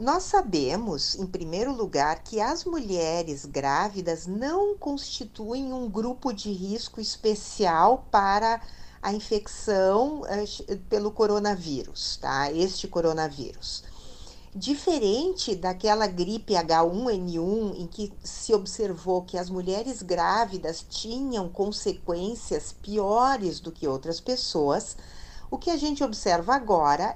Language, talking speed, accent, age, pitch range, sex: Portuguese, 110 wpm, Brazilian, 50-69, 185-255 Hz, female